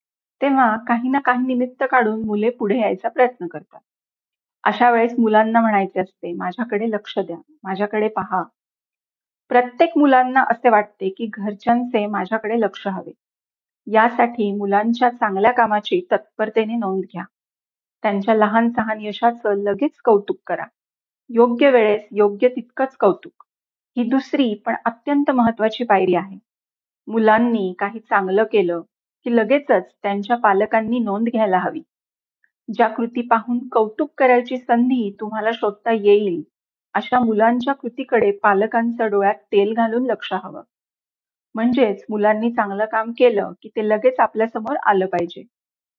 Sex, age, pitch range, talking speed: female, 40-59, 210-245 Hz, 115 wpm